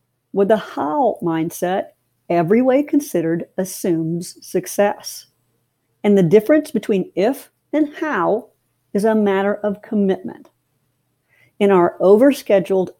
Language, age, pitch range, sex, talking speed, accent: English, 60-79, 170-230 Hz, female, 110 wpm, American